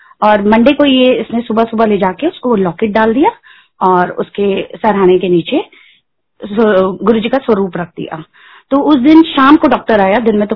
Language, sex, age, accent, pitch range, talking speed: Hindi, female, 30-49, native, 205-260 Hz, 195 wpm